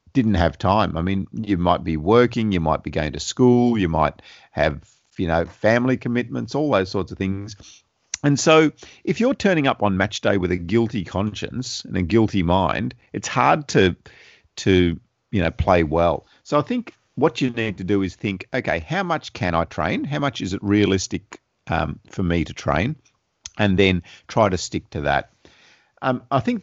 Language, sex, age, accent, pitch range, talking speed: English, male, 50-69, Australian, 90-120 Hz, 200 wpm